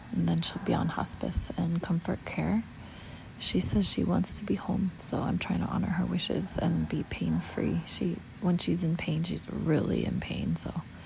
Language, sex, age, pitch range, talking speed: English, female, 20-39, 155-185 Hz, 200 wpm